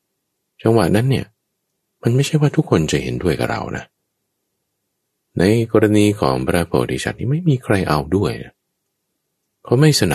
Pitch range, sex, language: 65-110 Hz, male, Thai